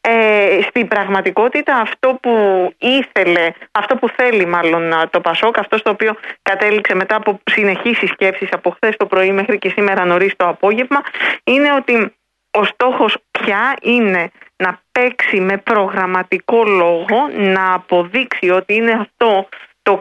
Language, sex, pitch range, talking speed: Greek, female, 180-220 Hz, 140 wpm